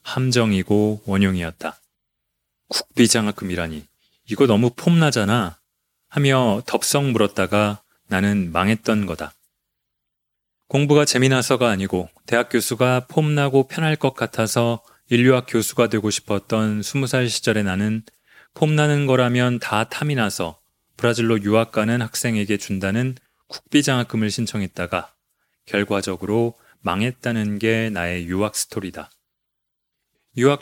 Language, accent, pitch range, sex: Korean, native, 105-130 Hz, male